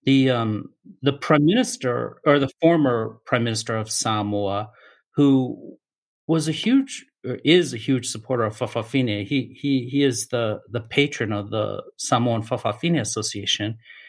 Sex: male